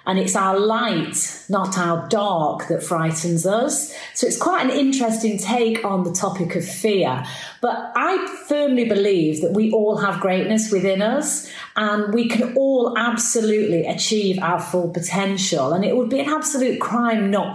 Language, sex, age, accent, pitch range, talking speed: English, female, 30-49, British, 180-235 Hz, 170 wpm